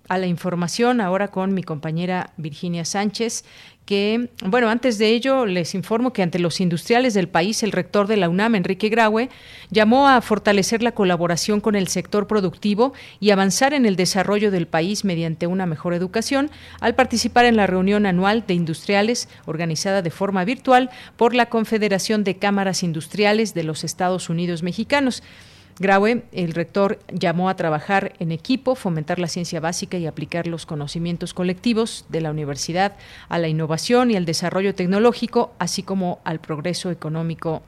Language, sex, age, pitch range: Spanish, female, 40-59, 175-225 Hz